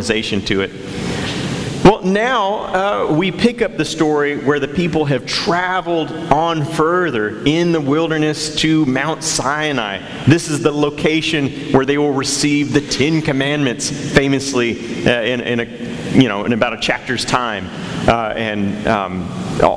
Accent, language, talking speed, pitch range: American, English, 150 wpm, 130-165 Hz